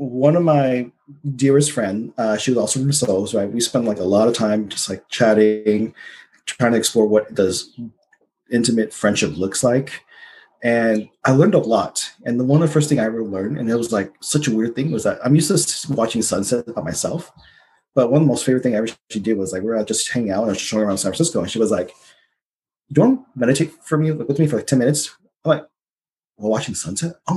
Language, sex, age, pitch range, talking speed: English, male, 30-49, 110-145 Hz, 235 wpm